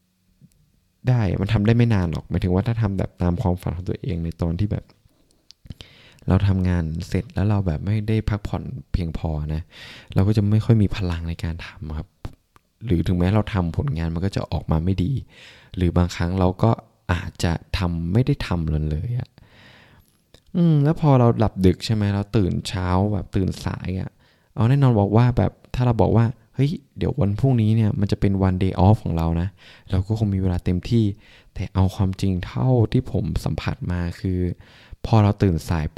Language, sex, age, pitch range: Thai, male, 20-39, 90-115 Hz